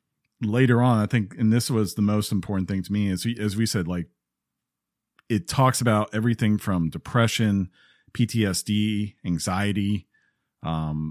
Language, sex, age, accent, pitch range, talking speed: English, male, 40-59, American, 90-120 Hz, 150 wpm